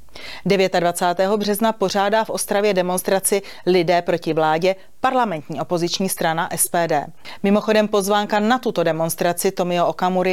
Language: Czech